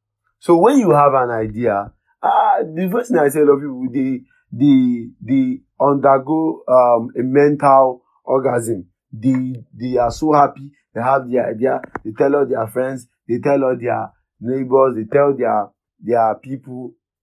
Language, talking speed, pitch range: English, 165 wpm, 105-150 Hz